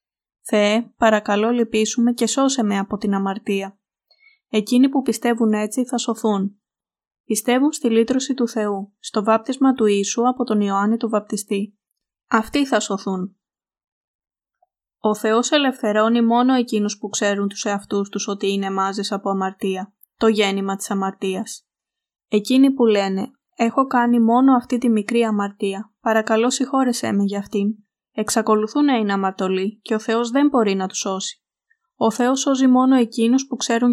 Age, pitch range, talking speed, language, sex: 20-39, 200-245 Hz, 150 wpm, Greek, female